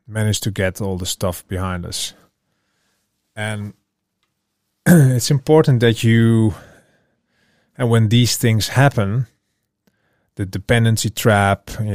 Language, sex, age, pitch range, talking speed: English, male, 30-49, 100-115 Hz, 110 wpm